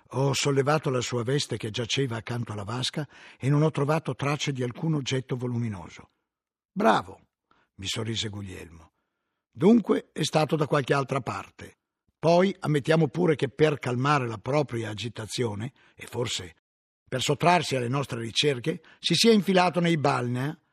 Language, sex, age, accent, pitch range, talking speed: Italian, male, 60-79, native, 115-155 Hz, 150 wpm